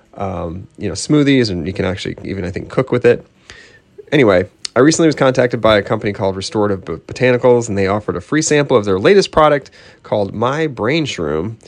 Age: 30-49